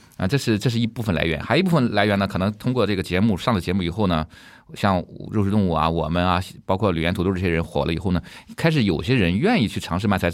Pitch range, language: 90-115 Hz, Chinese